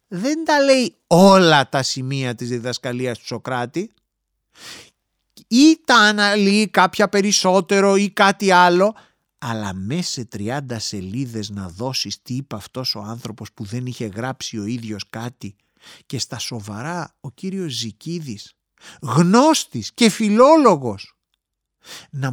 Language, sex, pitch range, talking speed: English, male, 120-175 Hz, 125 wpm